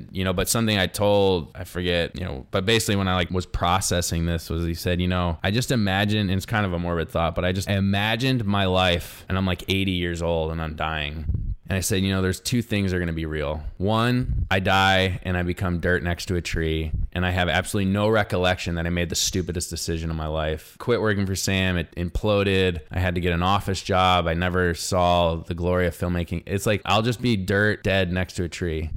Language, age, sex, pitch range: English, 20-39, male, 85-100 Hz